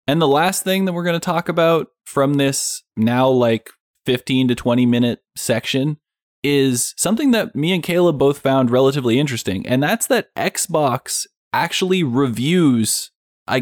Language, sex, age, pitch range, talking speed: English, male, 20-39, 110-145 Hz, 160 wpm